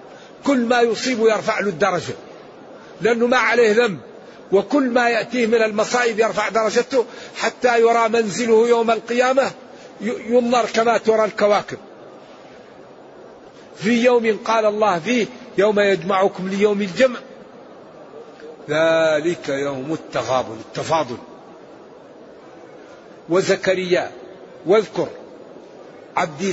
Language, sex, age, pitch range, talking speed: Arabic, male, 50-69, 170-225 Hz, 95 wpm